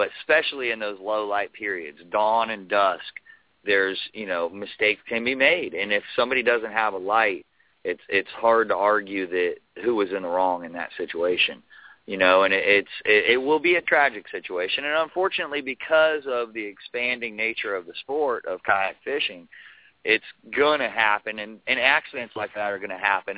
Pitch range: 105-145 Hz